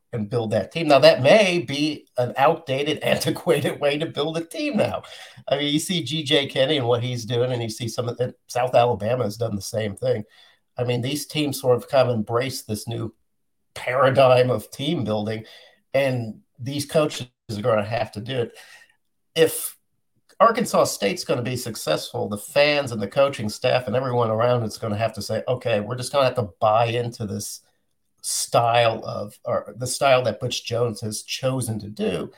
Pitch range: 120-160 Hz